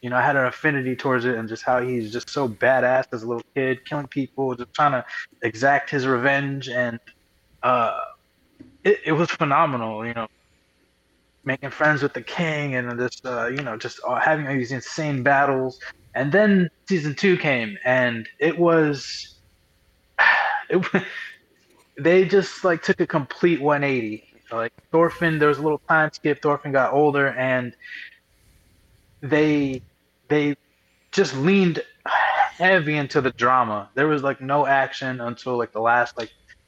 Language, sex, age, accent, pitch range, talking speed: English, male, 20-39, American, 120-155 Hz, 160 wpm